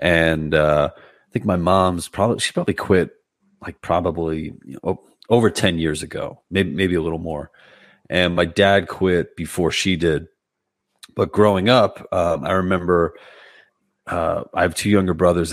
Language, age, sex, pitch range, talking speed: English, 30-49, male, 85-105 Hz, 155 wpm